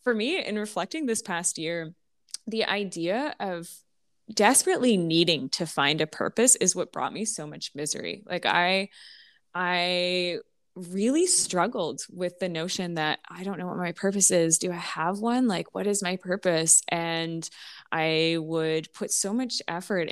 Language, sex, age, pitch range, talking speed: English, female, 20-39, 155-190 Hz, 165 wpm